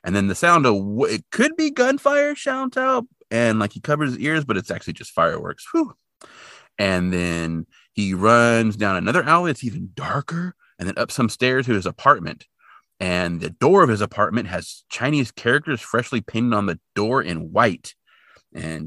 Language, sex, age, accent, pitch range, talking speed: English, male, 30-49, American, 95-140 Hz, 180 wpm